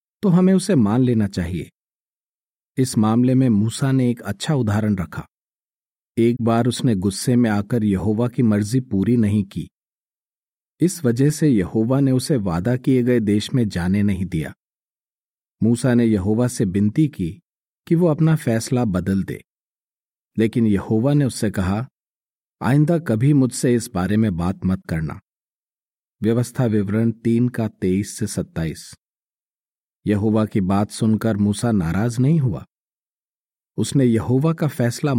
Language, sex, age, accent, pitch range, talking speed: Hindi, male, 40-59, native, 105-135 Hz, 145 wpm